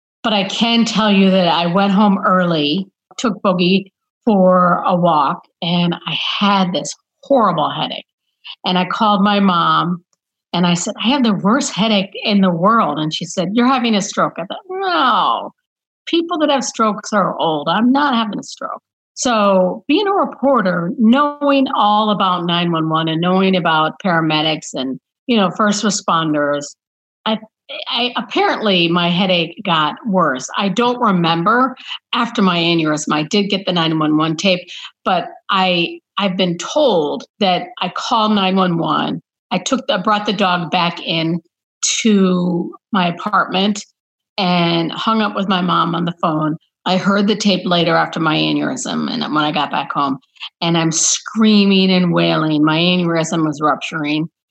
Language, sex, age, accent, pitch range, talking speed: English, female, 50-69, American, 170-220 Hz, 160 wpm